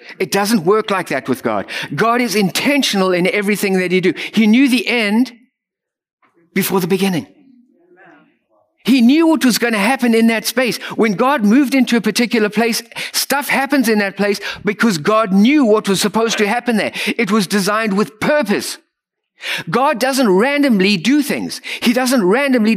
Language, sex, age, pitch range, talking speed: English, male, 50-69, 185-240 Hz, 175 wpm